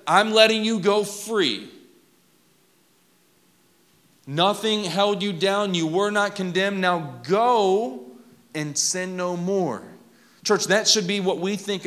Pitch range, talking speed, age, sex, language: 115-185 Hz, 130 wpm, 30-49, male, English